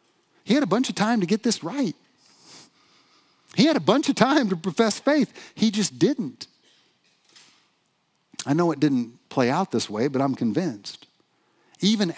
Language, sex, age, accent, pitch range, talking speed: English, male, 50-69, American, 145-215 Hz, 170 wpm